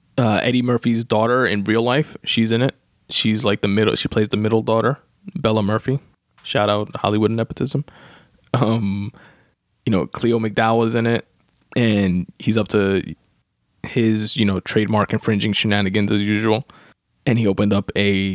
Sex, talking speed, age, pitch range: male, 165 wpm, 20-39, 100-115 Hz